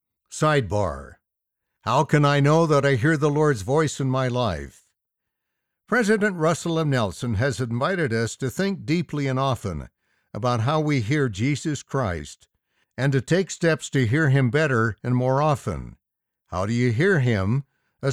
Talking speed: 160 wpm